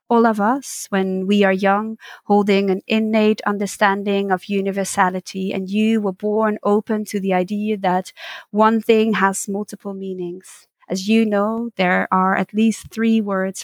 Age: 20-39